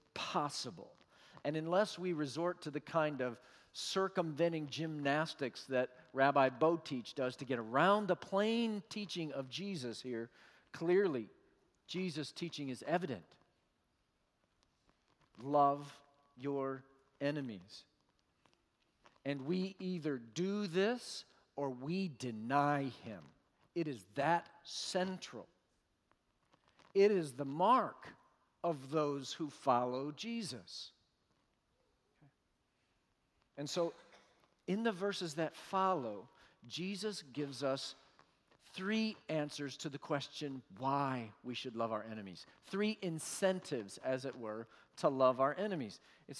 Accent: American